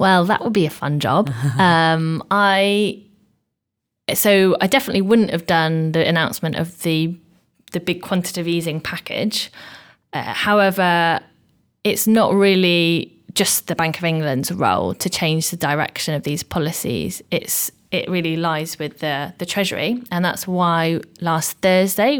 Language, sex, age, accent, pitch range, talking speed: English, female, 20-39, British, 155-190 Hz, 150 wpm